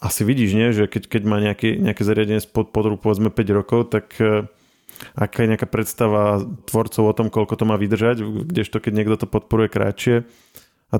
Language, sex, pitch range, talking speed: Slovak, male, 105-120 Hz, 185 wpm